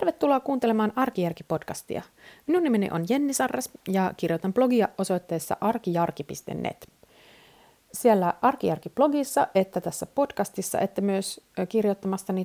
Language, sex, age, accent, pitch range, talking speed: Finnish, female, 30-49, native, 170-230 Hz, 100 wpm